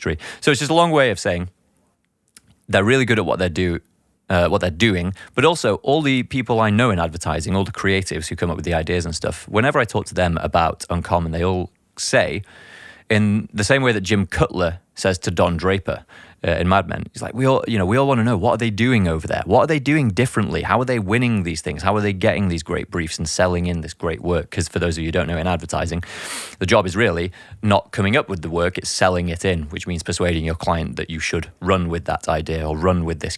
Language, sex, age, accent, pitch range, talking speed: English, male, 20-39, British, 85-105 Hz, 260 wpm